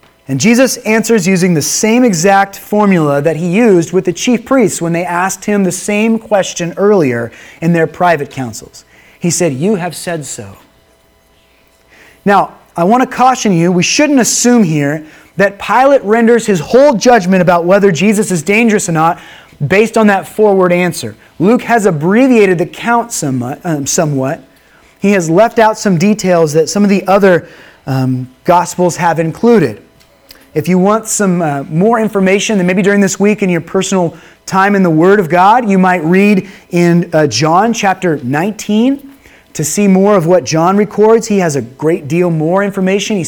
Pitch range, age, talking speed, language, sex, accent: 165-210 Hz, 30-49, 175 wpm, English, male, American